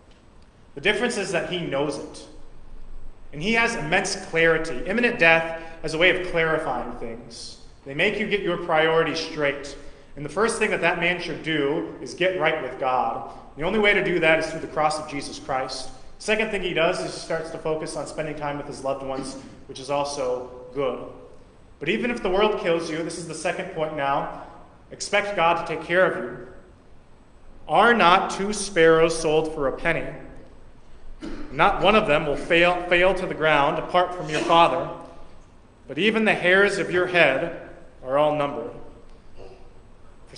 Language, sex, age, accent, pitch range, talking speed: English, male, 30-49, American, 130-175 Hz, 190 wpm